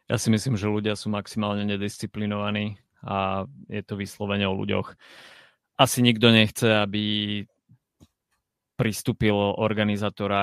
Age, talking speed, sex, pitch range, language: 30-49, 115 wpm, male, 95-105 Hz, Slovak